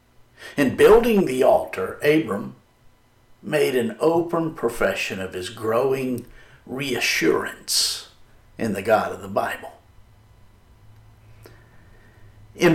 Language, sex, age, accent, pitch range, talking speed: English, male, 60-79, American, 105-135 Hz, 95 wpm